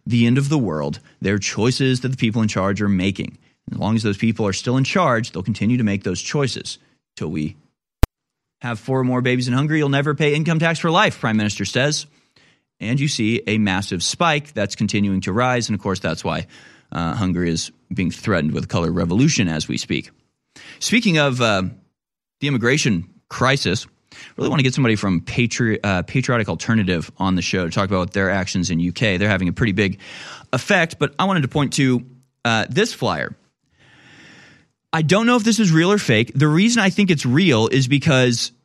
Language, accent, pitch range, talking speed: English, American, 100-145 Hz, 210 wpm